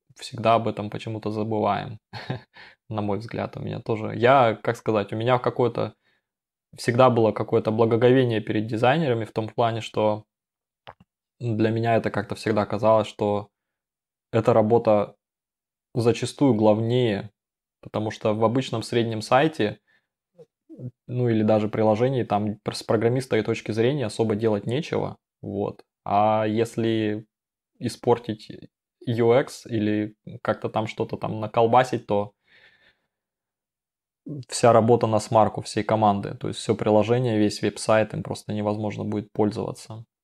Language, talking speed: Russian, 130 wpm